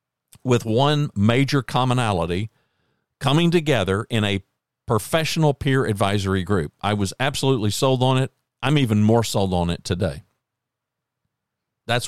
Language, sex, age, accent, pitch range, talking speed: English, male, 50-69, American, 95-120 Hz, 130 wpm